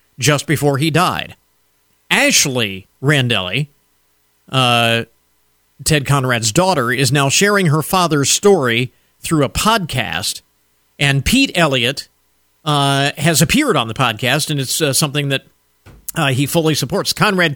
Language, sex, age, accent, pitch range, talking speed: English, male, 50-69, American, 130-170 Hz, 130 wpm